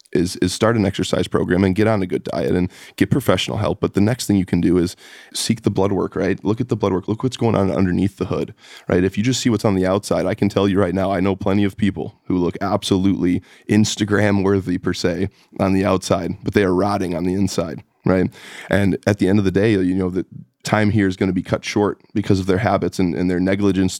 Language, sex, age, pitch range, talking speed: English, male, 20-39, 90-100 Hz, 265 wpm